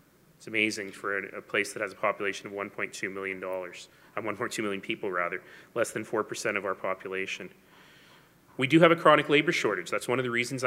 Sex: male